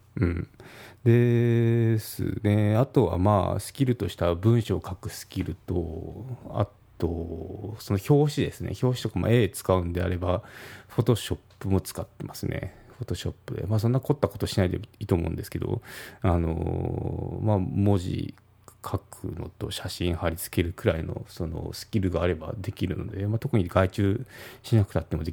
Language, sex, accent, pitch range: Japanese, male, native, 90-120 Hz